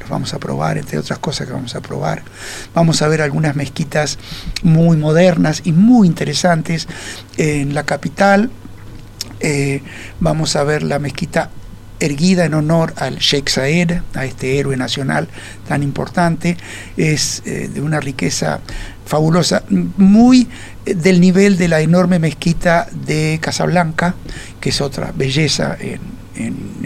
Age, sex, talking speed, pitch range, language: 60-79, male, 140 wpm, 140-180 Hz, Spanish